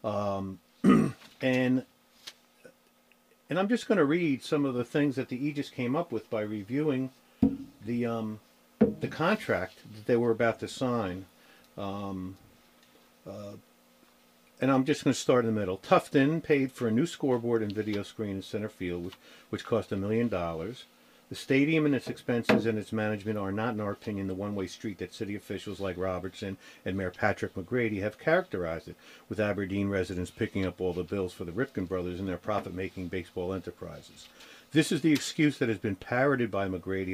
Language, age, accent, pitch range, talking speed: English, 50-69, American, 95-125 Hz, 185 wpm